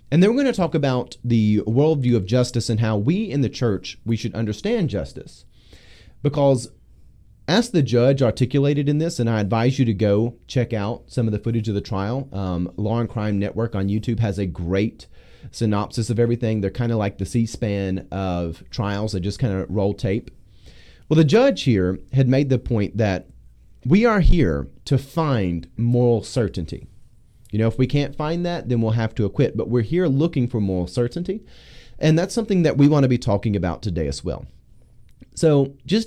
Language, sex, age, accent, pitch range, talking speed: English, male, 30-49, American, 100-135 Hz, 200 wpm